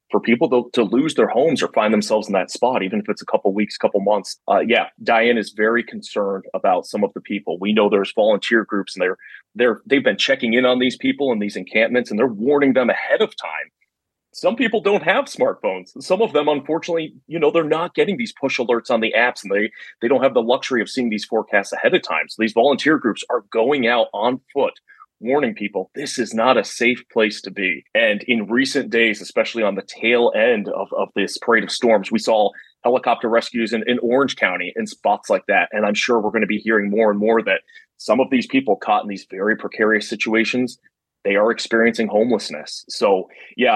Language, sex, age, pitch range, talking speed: English, male, 30-49, 110-140 Hz, 225 wpm